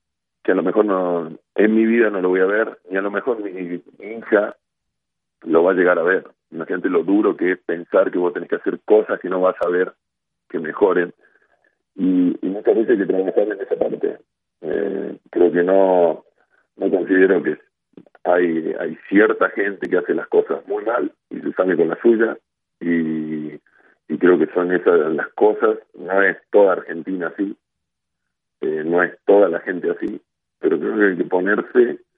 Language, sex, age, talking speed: Spanish, male, 40-59, 190 wpm